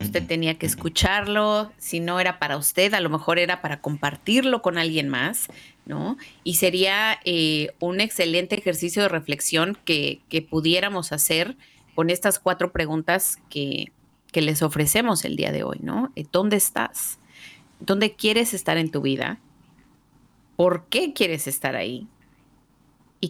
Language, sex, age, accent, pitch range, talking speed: Spanish, female, 30-49, Mexican, 155-190 Hz, 150 wpm